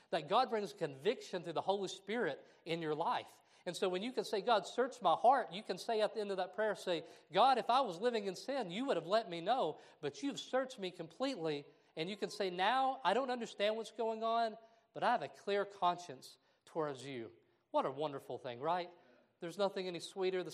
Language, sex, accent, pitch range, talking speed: English, male, American, 155-210 Hz, 230 wpm